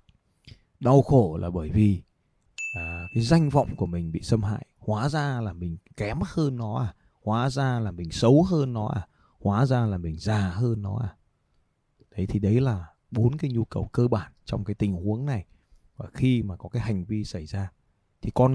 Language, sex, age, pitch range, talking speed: Vietnamese, male, 20-39, 95-130 Hz, 205 wpm